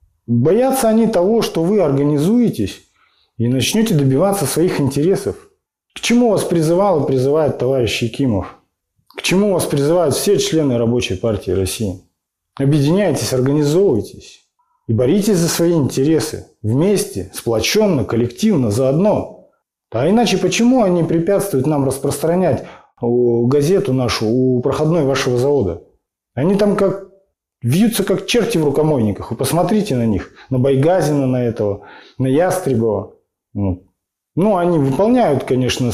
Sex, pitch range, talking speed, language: male, 125-200 Hz, 125 wpm, Russian